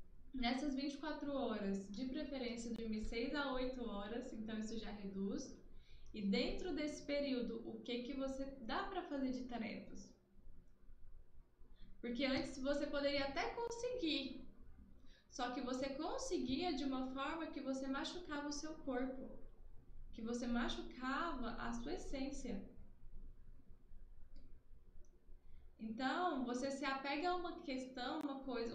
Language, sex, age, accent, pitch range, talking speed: Portuguese, female, 10-29, Brazilian, 240-310 Hz, 125 wpm